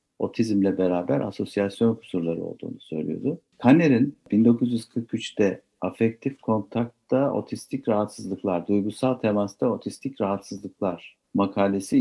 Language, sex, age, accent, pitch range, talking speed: Turkish, male, 60-79, native, 95-125 Hz, 85 wpm